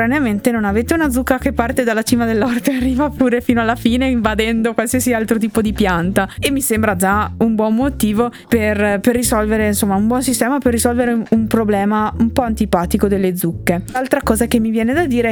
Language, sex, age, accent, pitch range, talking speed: Italian, female, 20-39, native, 205-250 Hz, 200 wpm